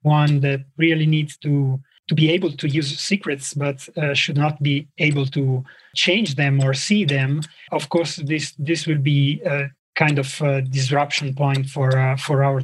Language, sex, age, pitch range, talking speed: English, male, 30-49, 135-155 Hz, 185 wpm